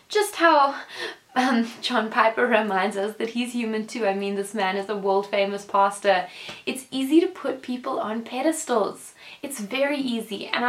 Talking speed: 175 wpm